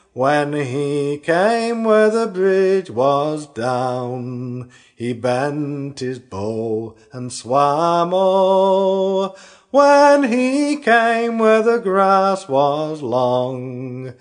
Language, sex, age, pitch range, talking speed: English, male, 40-59, 130-195 Hz, 95 wpm